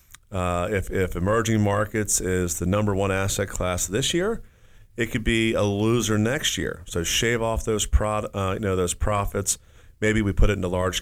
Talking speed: 195 wpm